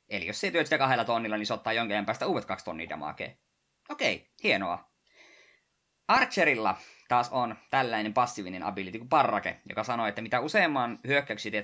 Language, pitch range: Finnish, 105-135 Hz